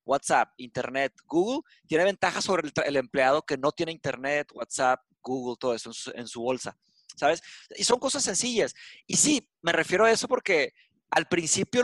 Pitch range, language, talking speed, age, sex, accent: 145-195 Hz, Spanish, 180 wpm, 30-49, male, Mexican